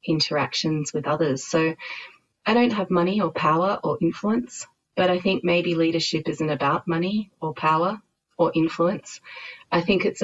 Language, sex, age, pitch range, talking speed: English, female, 30-49, 145-180 Hz, 160 wpm